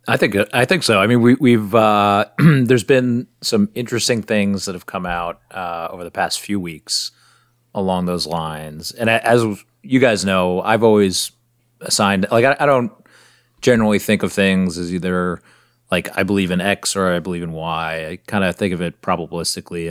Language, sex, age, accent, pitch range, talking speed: English, male, 30-49, American, 90-115 Hz, 190 wpm